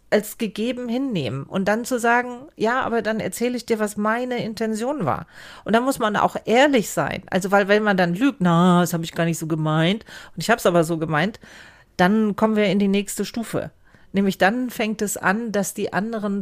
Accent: German